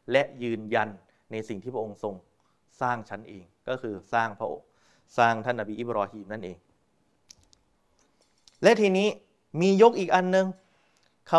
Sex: male